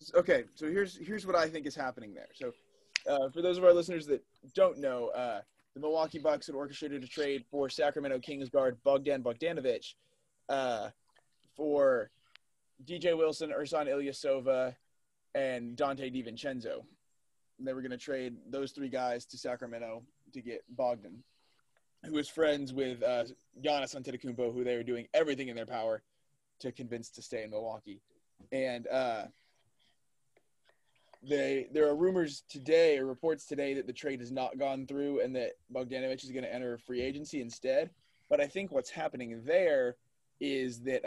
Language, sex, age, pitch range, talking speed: English, male, 20-39, 125-160 Hz, 165 wpm